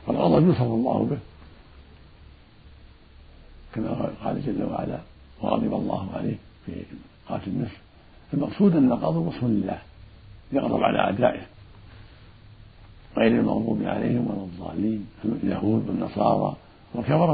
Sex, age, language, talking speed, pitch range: male, 60-79, Arabic, 100 wpm, 90-140 Hz